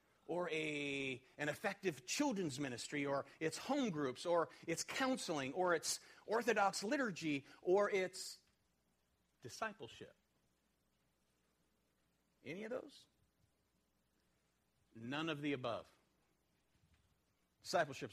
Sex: male